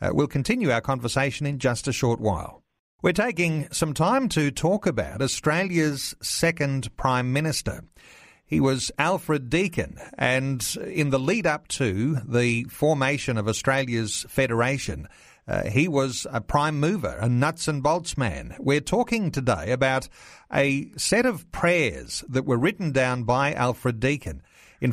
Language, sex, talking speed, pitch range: English, male, 145 wpm, 120-155 Hz